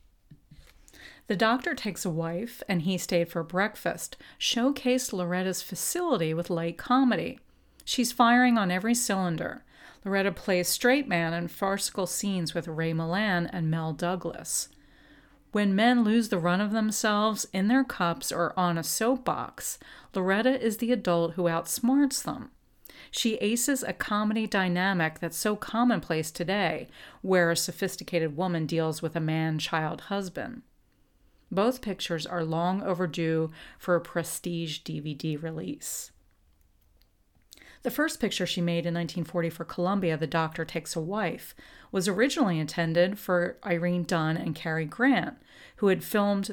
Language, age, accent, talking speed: English, 40-59, American, 140 wpm